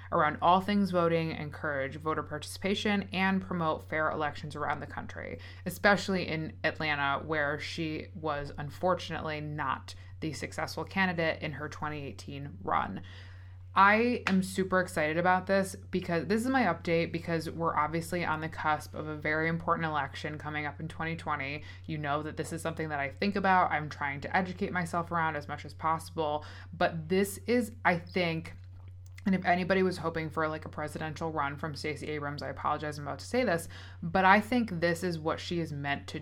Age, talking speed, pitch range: 20-39, 180 wpm, 150-185 Hz